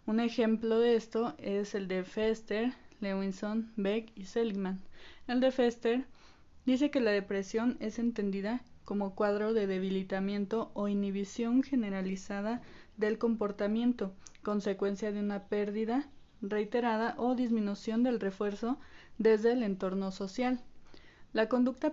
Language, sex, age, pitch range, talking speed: Spanish, female, 20-39, 195-230 Hz, 125 wpm